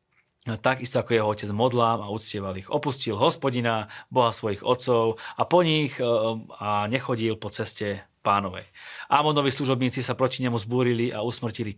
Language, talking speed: Slovak, 150 wpm